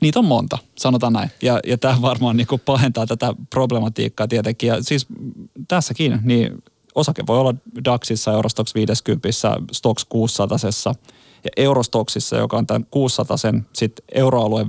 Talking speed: 135 wpm